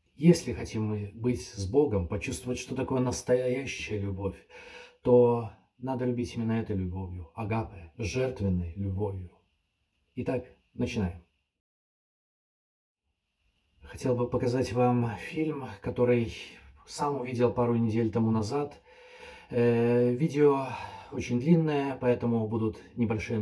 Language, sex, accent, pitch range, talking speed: Russian, male, native, 110-140 Hz, 100 wpm